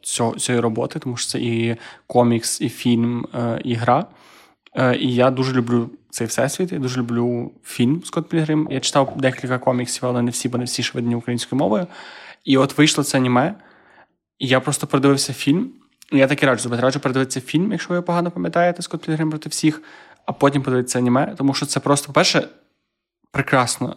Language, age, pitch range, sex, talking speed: Ukrainian, 20-39, 125-140 Hz, male, 190 wpm